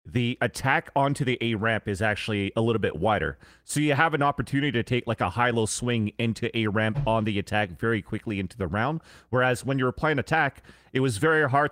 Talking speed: 220 wpm